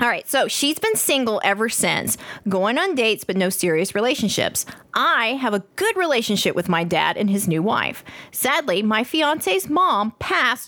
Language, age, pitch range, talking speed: English, 30-49, 185-270 Hz, 180 wpm